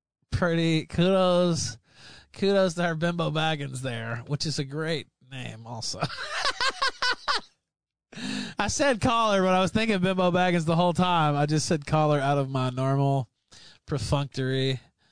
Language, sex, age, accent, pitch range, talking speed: English, male, 20-39, American, 130-180 Hz, 140 wpm